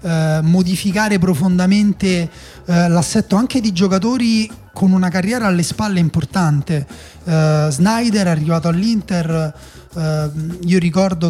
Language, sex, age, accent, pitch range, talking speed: Italian, male, 30-49, native, 160-195 Hz, 115 wpm